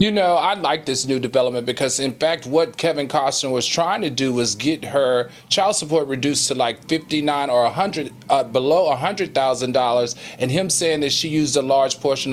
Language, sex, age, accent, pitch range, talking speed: English, male, 40-59, American, 135-185 Hz, 215 wpm